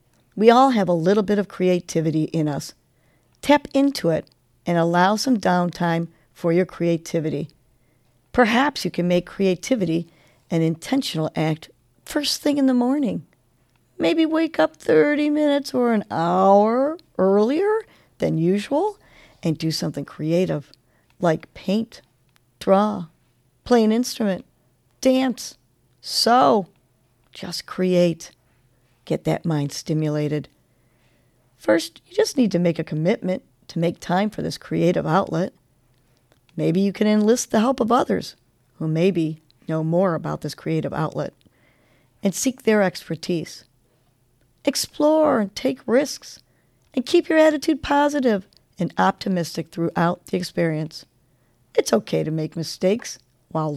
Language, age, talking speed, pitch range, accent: English, 50-69, 130 wpm, 155-235 Hz, American